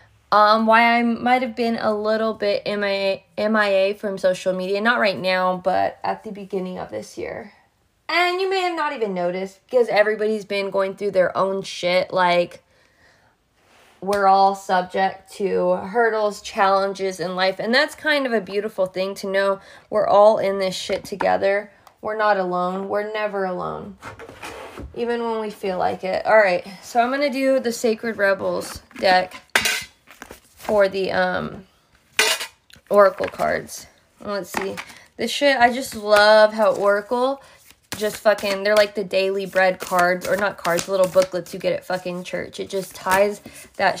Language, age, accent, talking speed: English, 20-39, American, 165 wpm